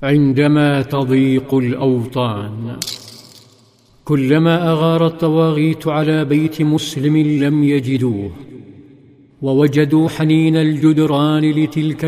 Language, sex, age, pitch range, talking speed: Arabic, male, 50-69, 140-155 Hz, 75 wpm